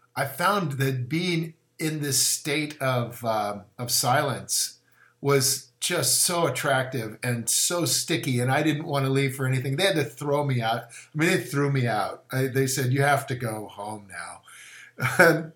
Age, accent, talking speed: 50-69, American, 185 wpm